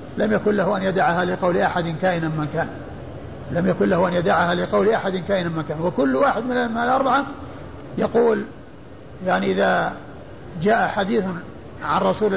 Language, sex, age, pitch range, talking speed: Arabic, male, 50-69, 190-250 Hz, 150 wpm